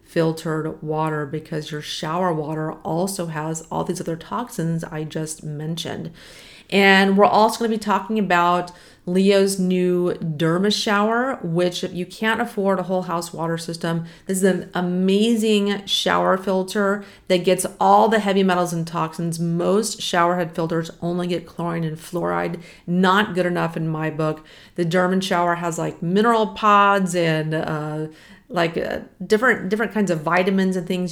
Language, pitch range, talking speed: English, 165-195 Hz, 160 wpm